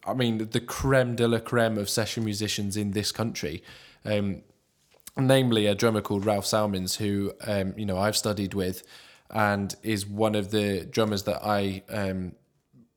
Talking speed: 165 wpm